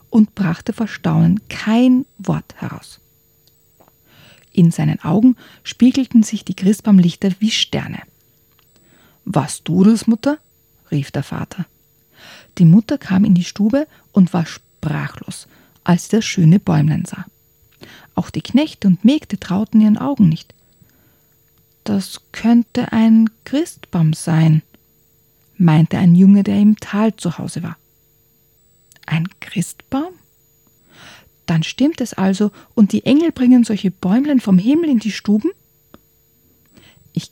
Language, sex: German, female